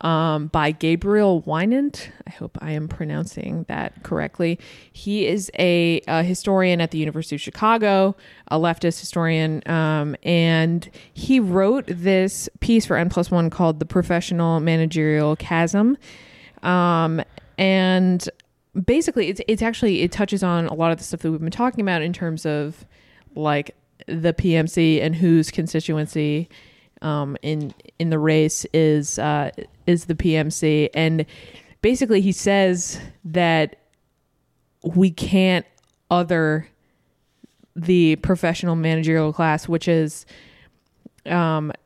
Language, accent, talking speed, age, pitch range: English, American, 130 wpm, 20-39, 155-185 Hz